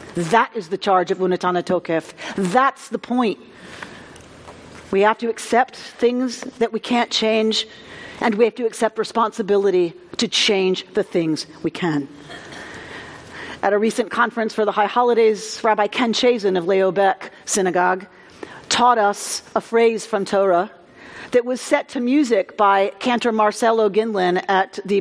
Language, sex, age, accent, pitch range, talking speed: English, female, 40-59, American, 195-250 Hz, 150 wpm